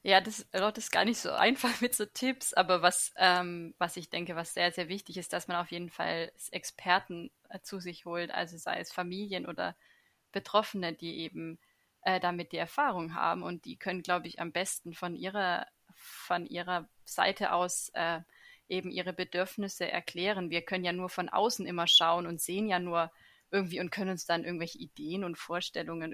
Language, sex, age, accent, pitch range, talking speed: German, female, 20-39, German, 170-185 Hz, 195 wpm